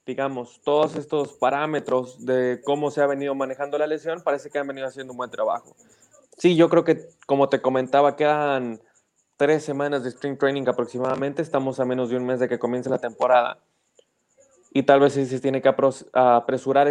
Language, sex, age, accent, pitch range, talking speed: Spanish, male, 20-39, Mexican, 130-150 Hz, 190 wpm